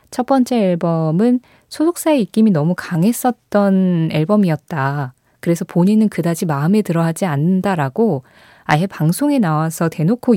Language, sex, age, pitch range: Korean, female, 20-39, 155-225 Hz